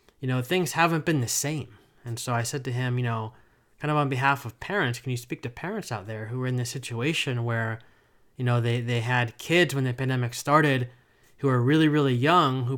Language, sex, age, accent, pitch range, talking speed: English, male, 20-39, American, 120-150 Hz, 235 wpm